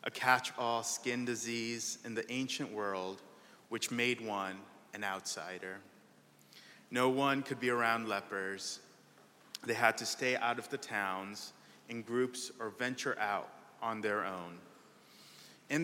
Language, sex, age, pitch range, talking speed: English, male, 30-49, 100-125 Hz, 135 wpm